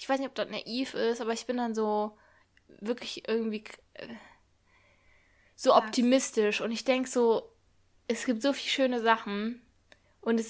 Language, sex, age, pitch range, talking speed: German, female, 10-29, 205-245 Hz, 160 wpm